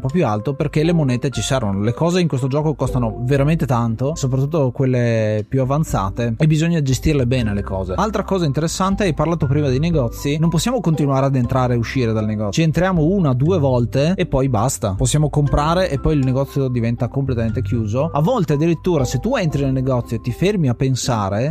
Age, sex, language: 30-49, male, Italian